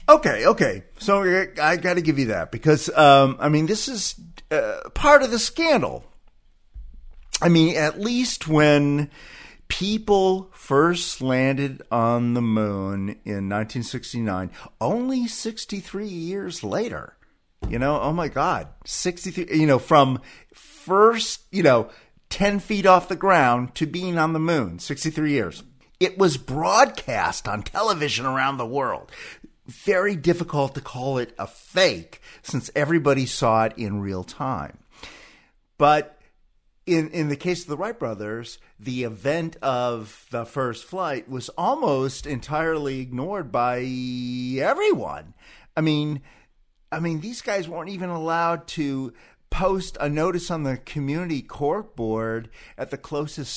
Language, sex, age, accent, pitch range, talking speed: English, male, 40-59, American, 125-180 Hz, 140 wpm